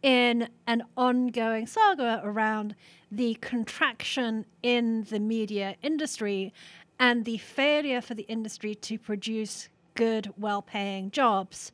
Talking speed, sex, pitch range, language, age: 110 wpm, female, 200-245 Hz, English, 30-49